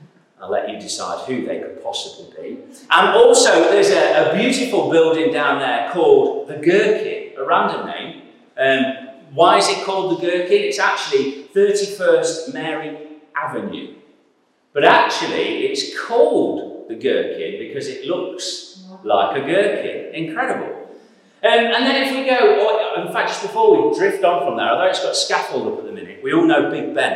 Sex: male